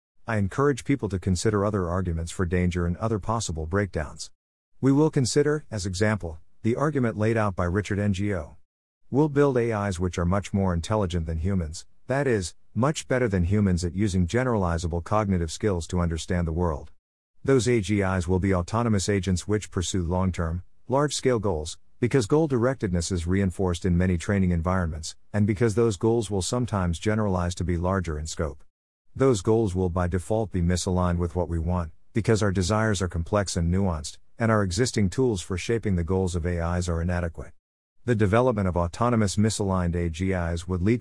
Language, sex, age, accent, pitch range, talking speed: English, male, 50-69, American, 90-110 Hz, 175 wpm